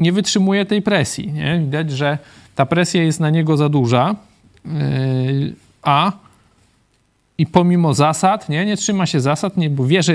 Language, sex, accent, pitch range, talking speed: Polish, male, native, 145-170 Hz, 160 wpm